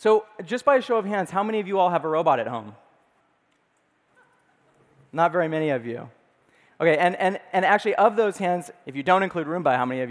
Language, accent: French, American